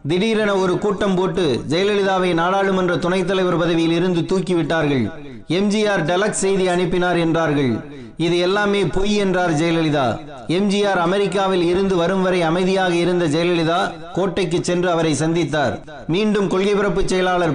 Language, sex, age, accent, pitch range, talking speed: Tamil, male, 30-49, native, 165-190 Hz, 100 wpm